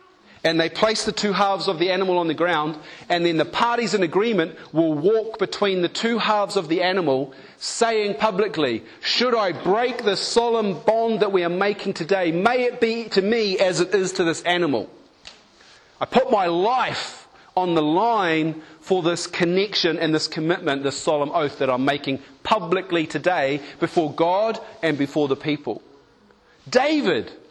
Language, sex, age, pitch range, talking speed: English, male, 40-59, 155-215 Hz, 170 wpm